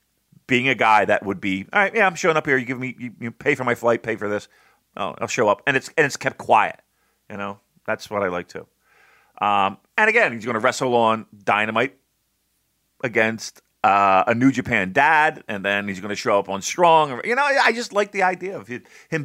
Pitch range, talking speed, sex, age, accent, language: 95-130 Hz, 240 wpm, male, 40-59, American, English